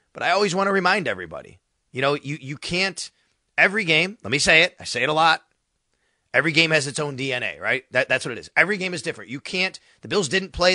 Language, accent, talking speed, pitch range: English, American, 250 wpm, 130-170 Hz